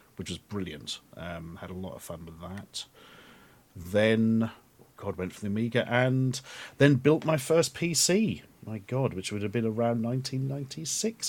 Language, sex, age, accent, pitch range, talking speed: English, male, 40-59, British, 115-160 Hz, 165 wpm